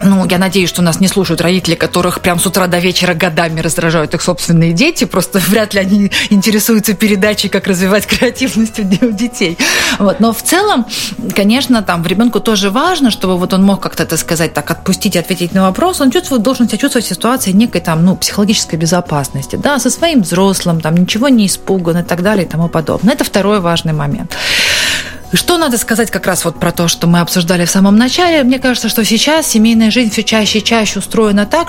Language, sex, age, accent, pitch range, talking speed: Russian, female, 30-49, native, 175-220 Hz, 205 wpm